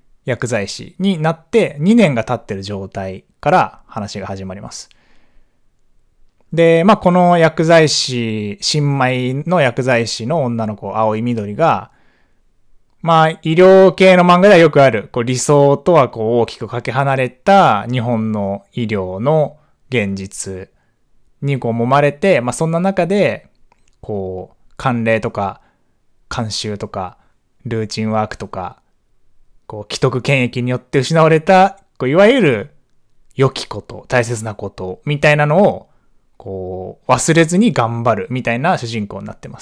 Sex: male